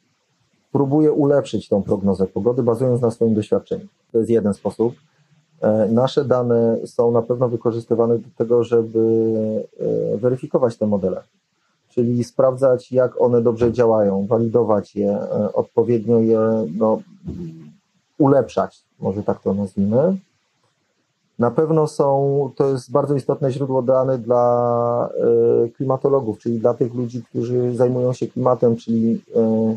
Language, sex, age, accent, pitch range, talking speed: Polish, male, 40-59, native, 115-125 Hz, 125 wpm